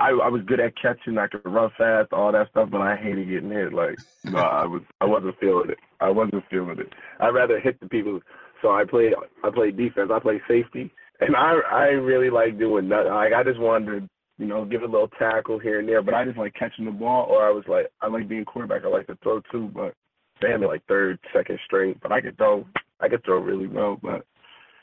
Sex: male